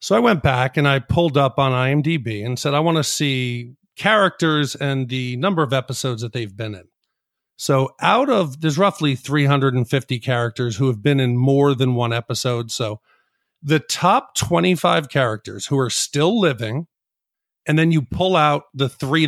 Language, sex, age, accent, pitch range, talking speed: English, male, 40-59, American, 125-160 Hz, 175 wpm